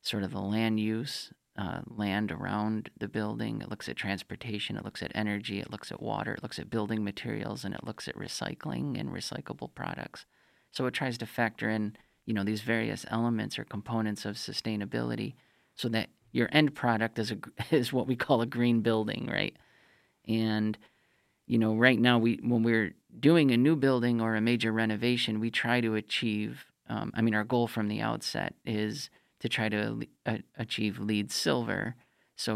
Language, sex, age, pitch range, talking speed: English, male, 30-49, 105-115 Hz, 185 wpm